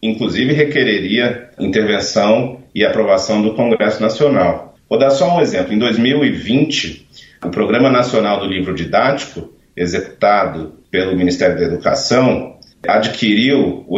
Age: 40-59